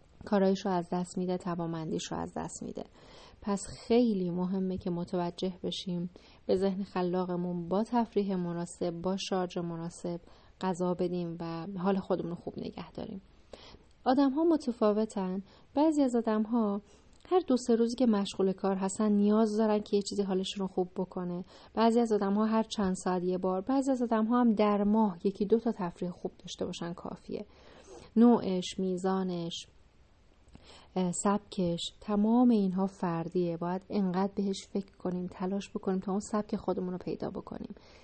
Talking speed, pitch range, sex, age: 155 wpm, 180-210 Hz, female, 30-49